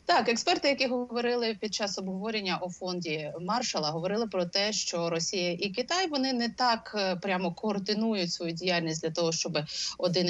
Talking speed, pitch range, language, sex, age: 165 wpm, 180-235 Hz, Ukrainian, female, 30-49